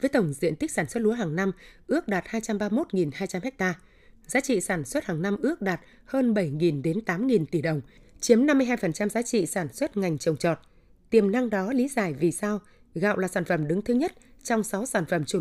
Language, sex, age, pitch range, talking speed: Vietnamese, female, 20-39, 175-230 Hz, 215 wpm